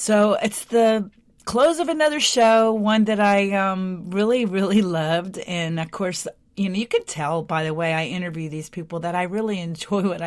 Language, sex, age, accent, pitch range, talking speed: English, female, 40-59, American, 165-205 Hz, 200 wpm